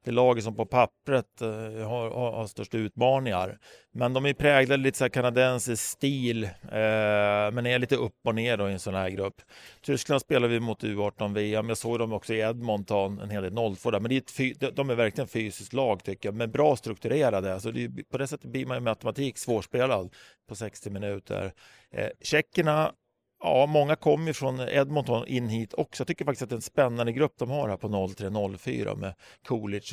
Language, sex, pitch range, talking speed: Swedish, male, 105-130 Hz, 185 wpm